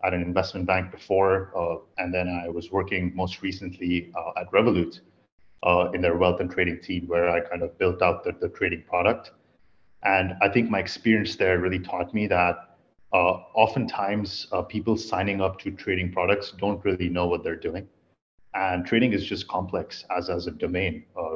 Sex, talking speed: male, 190 wpm